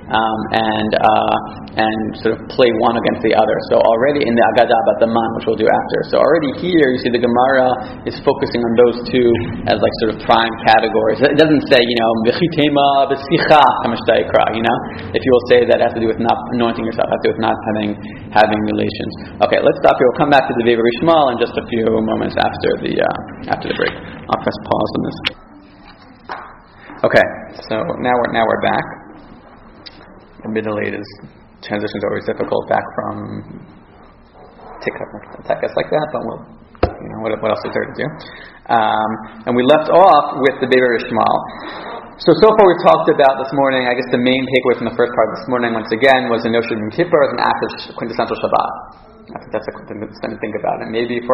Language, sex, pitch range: English, male, 110-130 Hz